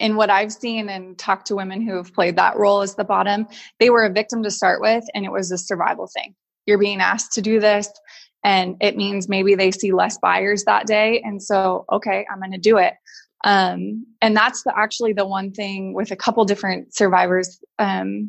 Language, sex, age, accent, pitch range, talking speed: English, female, 20-39, American, 190-220 Hz, 215 wpm